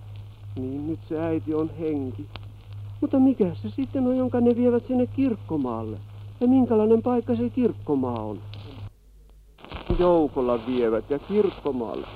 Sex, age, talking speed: male, 60-79, 130 wpm